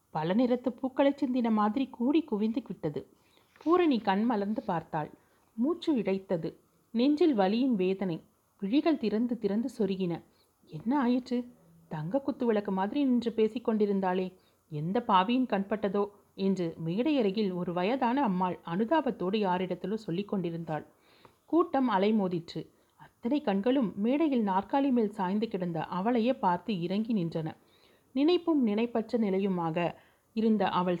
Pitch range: 185-245 Hz